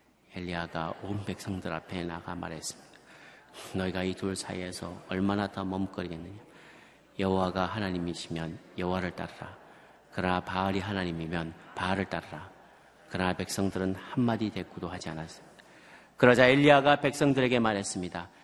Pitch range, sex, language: 90-125 Hz, male, Korean